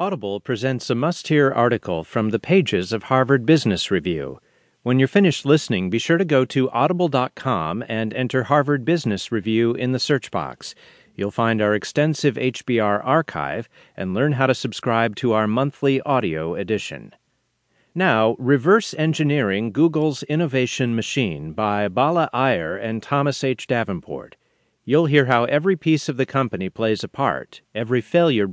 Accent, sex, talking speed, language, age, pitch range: American, male, 155 wpm, English, 40-59, 110-145 Hz